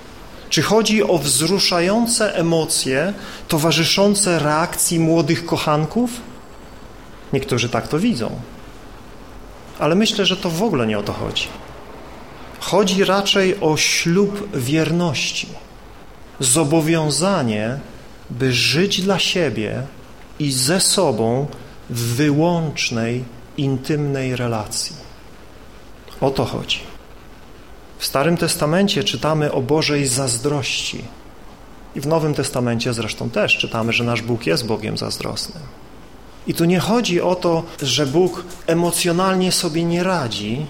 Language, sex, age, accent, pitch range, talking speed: Polish, male, 40-59, native, 135-175 Hz, 110 wpm